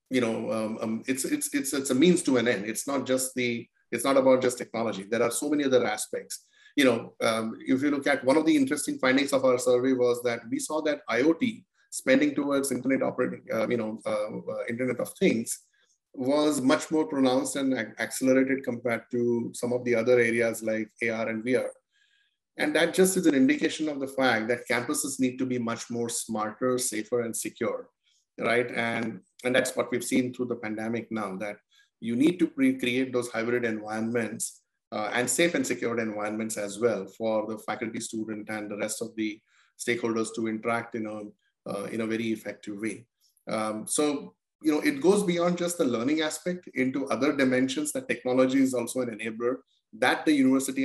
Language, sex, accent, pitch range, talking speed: English, male, Indian, 115-150 Hz, 200 wpm